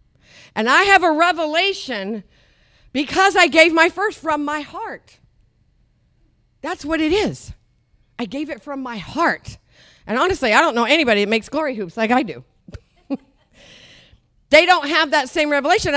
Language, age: English, 50-69